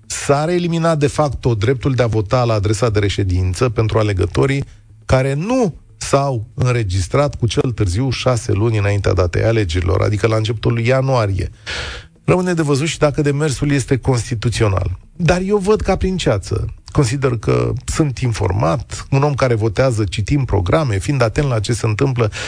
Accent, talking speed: native, 160 wpm